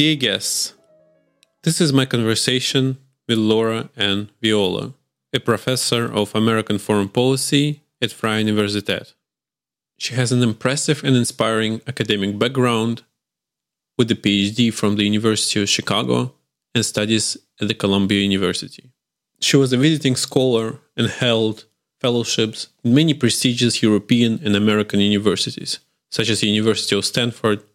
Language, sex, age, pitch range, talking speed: English, male, 20-39, 110-130 Hz, 135 wpm